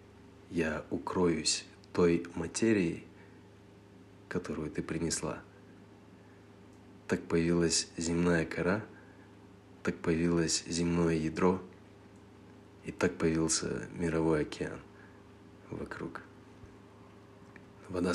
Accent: native